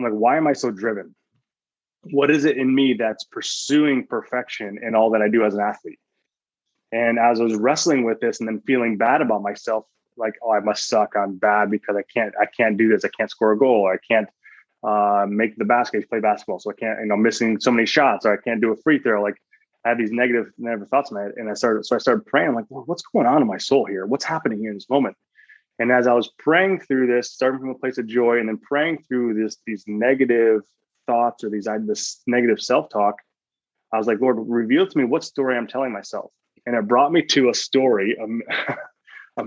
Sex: male